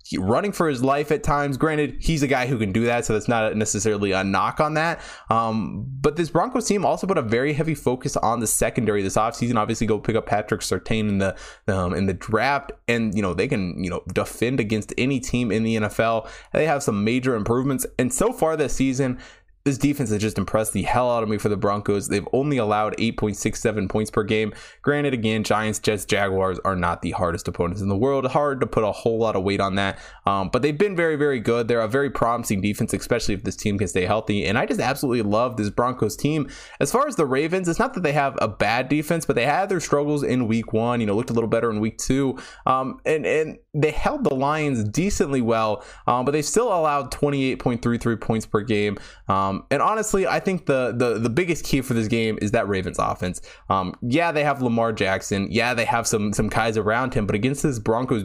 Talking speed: 235 wpm